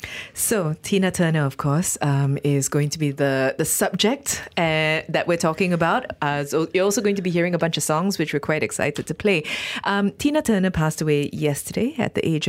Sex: female